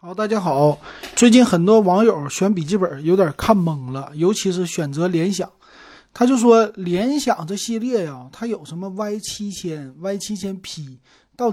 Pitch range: 160-210 Hz